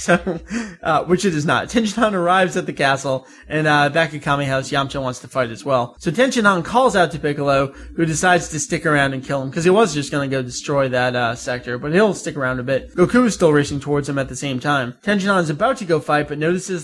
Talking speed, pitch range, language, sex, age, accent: 255 wpm, 140-180 Hz, English, male, 20-39, American